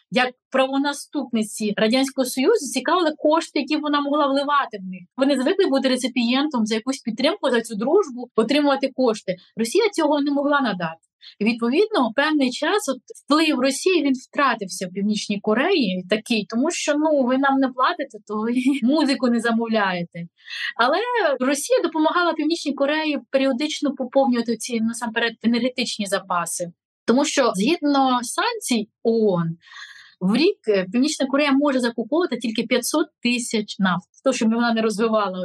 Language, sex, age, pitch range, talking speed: Ukrainian, female, 20-39, 215-285 Hz, 140 wpm